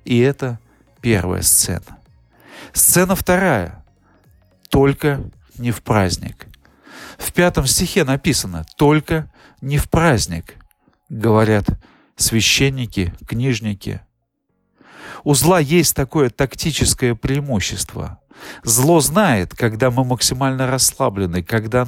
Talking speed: 95 wpm